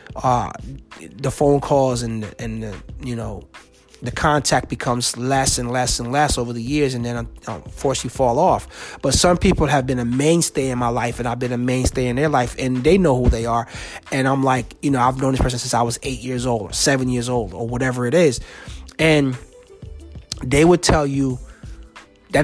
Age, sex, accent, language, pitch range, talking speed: 30-49, male, American, English, 120-150 Hz, 215 wpm